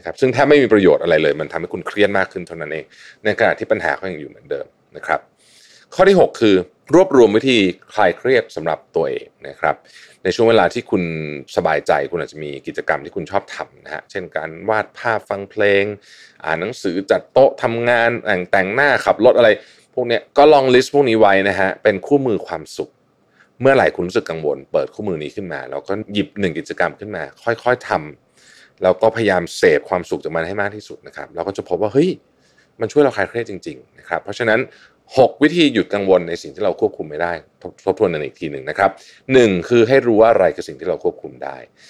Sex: male